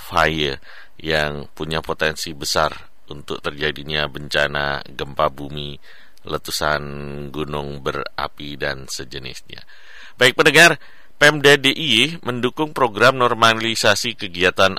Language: Indonesian